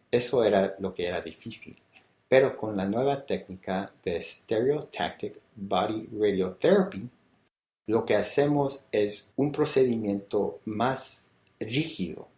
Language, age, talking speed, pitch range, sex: English, 50-69, 110 wpm, 95-115 Hz, male